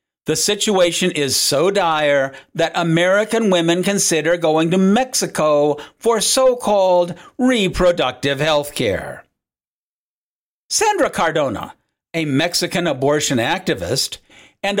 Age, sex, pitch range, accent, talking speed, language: 50-69, male, 155-200 Hz, American, 95 wpm, English